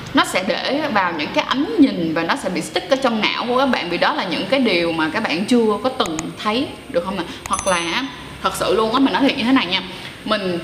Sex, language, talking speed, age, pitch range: female, Vietnamese, 275 wpm, 20-39, 185-265 Hz